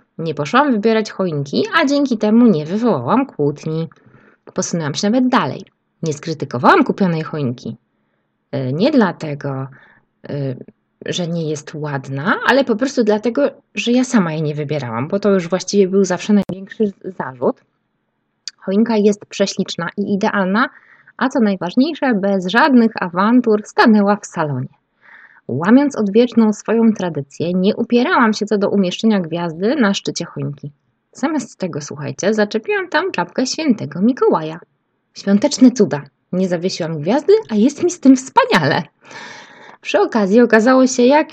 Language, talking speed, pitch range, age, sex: Polish, 135 wpm, 175-245 Hz, 20-39, female